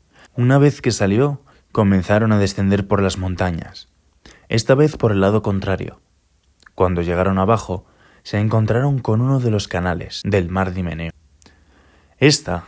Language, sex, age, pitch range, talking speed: Spanish, male, 20-39, 90-115 Hz, 140 wpm